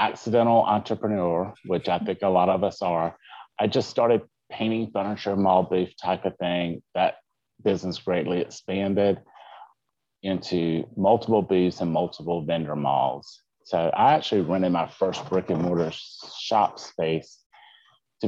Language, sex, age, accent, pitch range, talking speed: English, male, 30-49, American, 85-110 Hz, 140 wpm